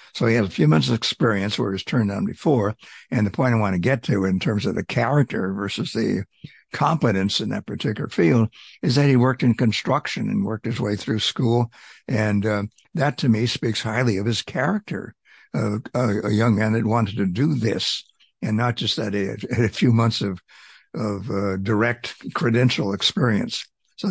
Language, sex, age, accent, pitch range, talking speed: English, male, 60-79, American, 100-125 Hz, 200 wpm